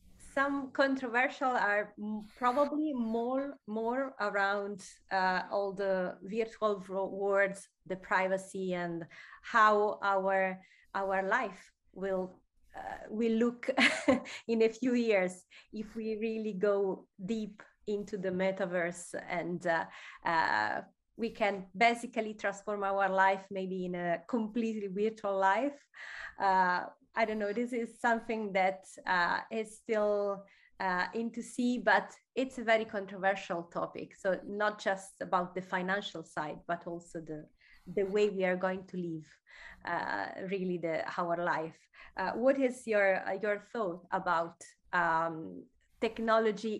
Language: English